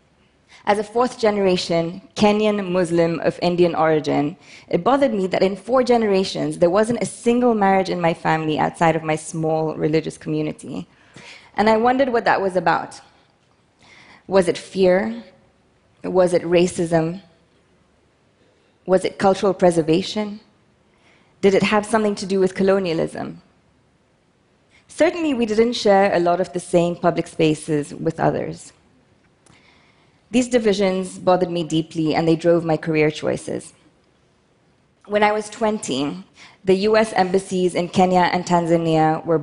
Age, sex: 20-39, female